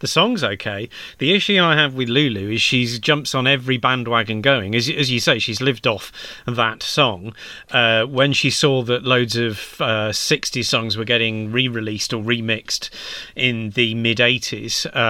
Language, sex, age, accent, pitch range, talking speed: English, male, 30-49, British, 115-150 Hz, 170 wpm